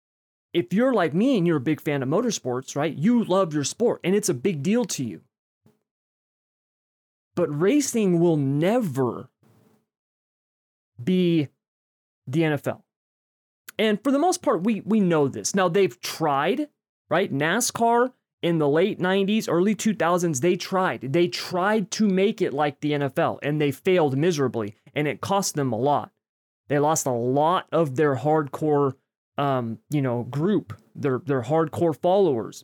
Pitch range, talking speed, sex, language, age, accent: 135-180 Hz, 155 wpm, male, English, 30-49, American